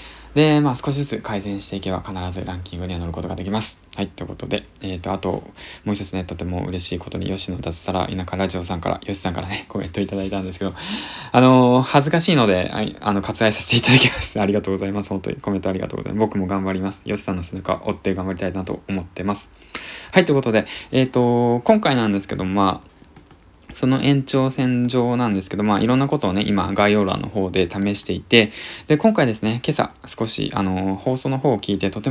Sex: male